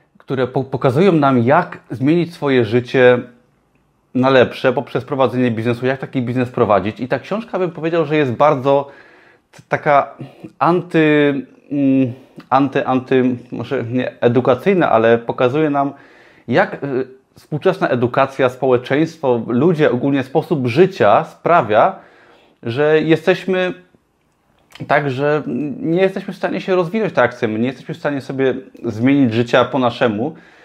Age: 20-39